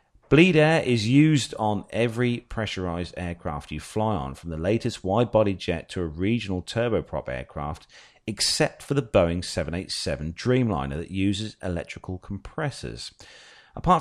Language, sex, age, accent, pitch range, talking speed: English, male, 40-59, British, 80-110 Hz, 135 wpm